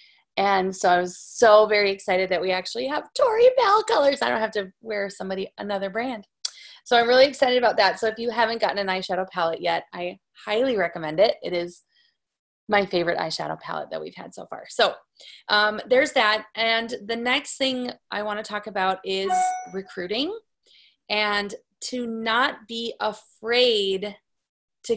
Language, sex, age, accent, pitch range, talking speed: English, female, 20-39, American, 185-230 Hz, 175 wpm